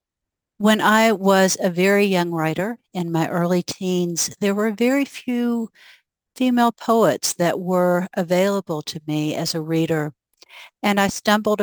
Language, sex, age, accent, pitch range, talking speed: English, female, 60-79, American, 160-195 Hz, 145 wpm